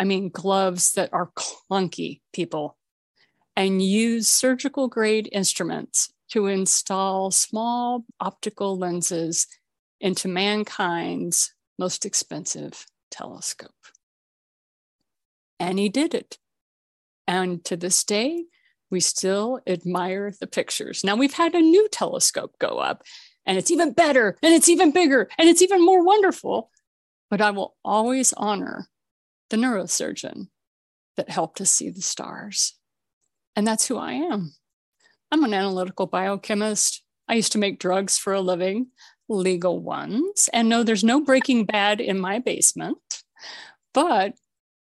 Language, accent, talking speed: English, American, 130 wpm